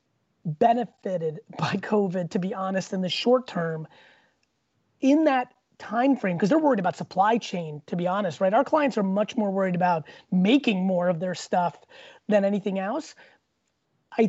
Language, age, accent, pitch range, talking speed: English, 30-49, American, 180-225 Hz, 165 wpm